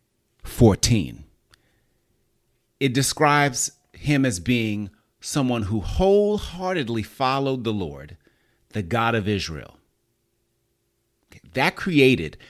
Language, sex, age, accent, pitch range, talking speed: English, male, 30-49, American, 105-140 Hz, 85 wpm